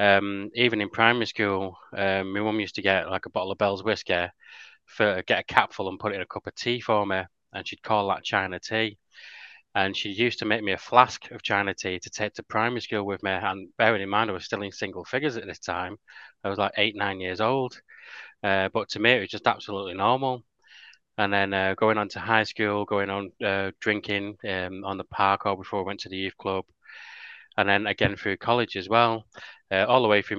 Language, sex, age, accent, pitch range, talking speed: English, male, 20-39, British, 95-110 Hz, 235 wpm